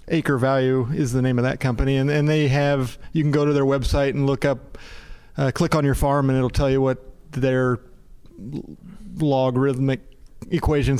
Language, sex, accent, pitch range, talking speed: English, male, American, 125-150 Hz, 185 wpm